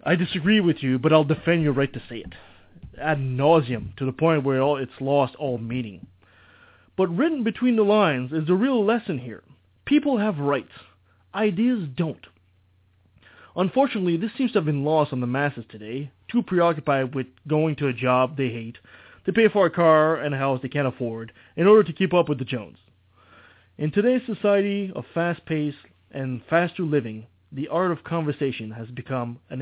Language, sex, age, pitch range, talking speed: English, male, 20-39, 115-170 Hz, 185 wpm